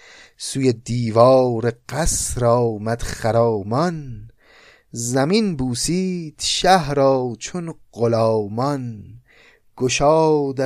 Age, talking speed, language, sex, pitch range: 30-49, 60 wpm, Persian, male, 110-135 Hz